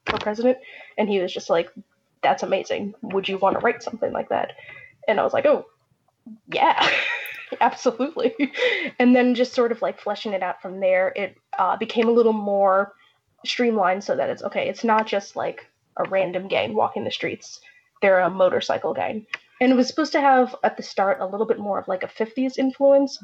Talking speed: 200 wpm